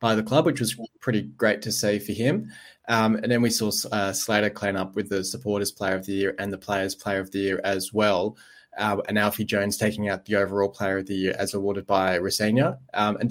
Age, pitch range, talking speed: 20-39, 100-115 Hz, 245 wpm